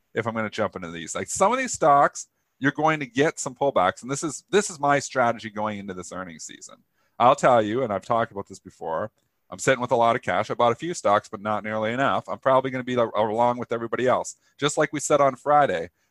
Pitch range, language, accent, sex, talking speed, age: 105-135 Hz, English, American, male, 260 wpm, 40-59